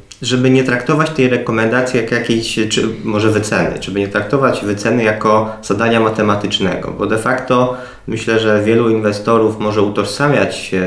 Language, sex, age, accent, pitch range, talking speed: Polish, male, 20-39, native, 100-120 Hz, 140 wpm